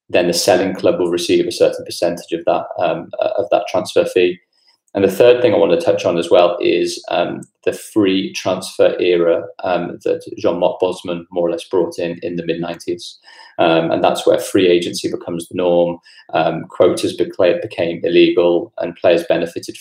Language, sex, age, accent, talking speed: English, male, 30-49, British, 175 wpm